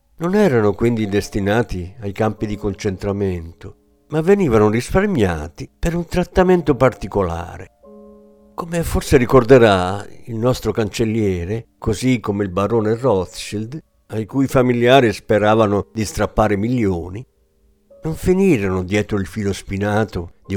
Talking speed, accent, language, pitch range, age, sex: 115 wpm, native, Italian, 95-135 Hz, 50-69, male